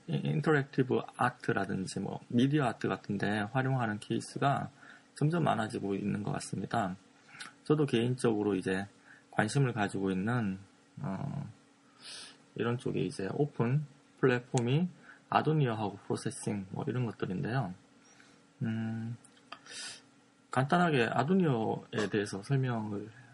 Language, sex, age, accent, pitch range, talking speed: English, male, 20-39, Korean, 105-140 Hz, 90 wpm